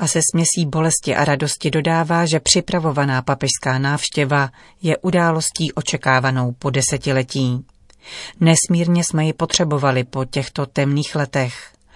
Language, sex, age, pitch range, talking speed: Czech, female, 40-59, 140-165 Hz, 120 wpm